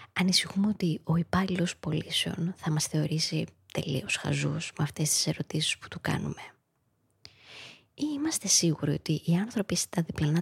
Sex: female